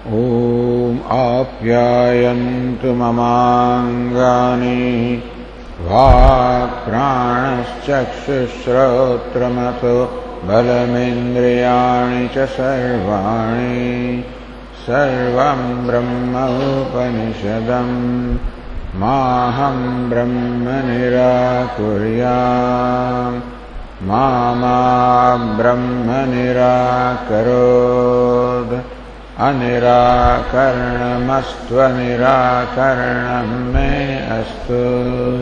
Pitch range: 120-125 Hz